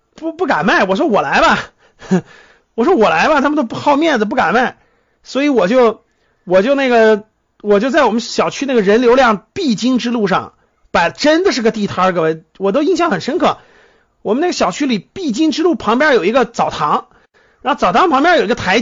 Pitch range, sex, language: 210-290 Hz, male, Chinese